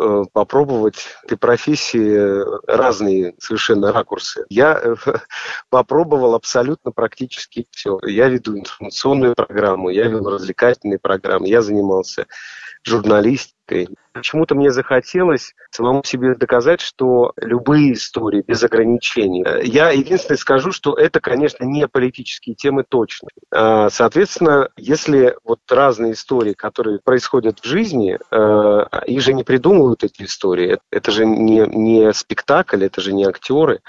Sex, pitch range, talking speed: male, 105-135 Hz, 120 wpm